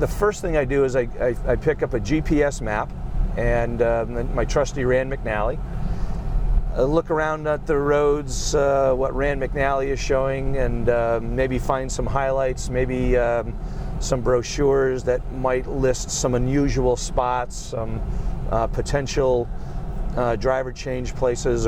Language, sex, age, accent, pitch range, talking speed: English, male, 40-59, American, 125-150 Hz, 150 wpm